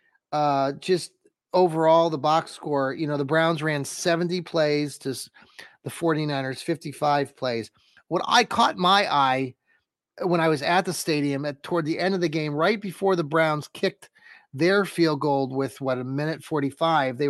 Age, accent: 30-49, American